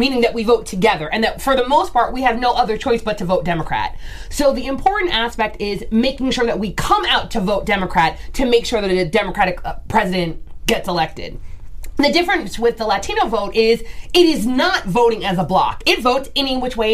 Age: 20-39